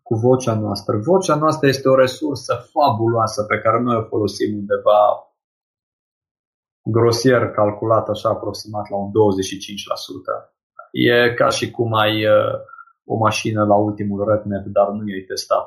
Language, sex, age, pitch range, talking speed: Romanian, male, 20-39, 105-140 Hz, 140 wpm